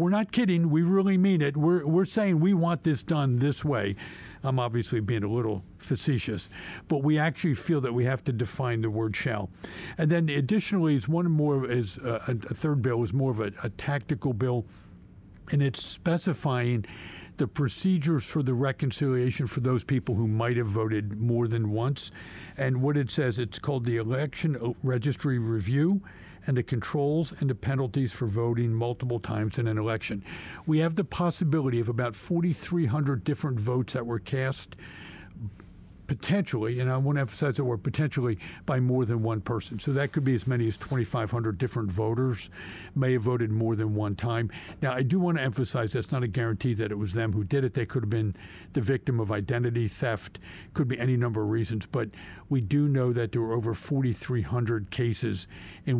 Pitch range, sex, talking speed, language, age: 110-145 Hz, male, 190 wpm, English, 50-69